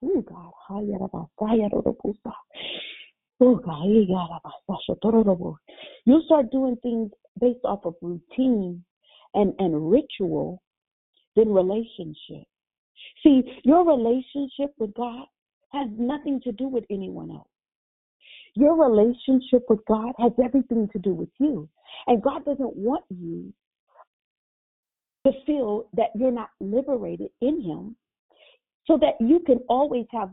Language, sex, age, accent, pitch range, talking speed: English, female, 40-59, American, 210-280 Hz, 105 wpm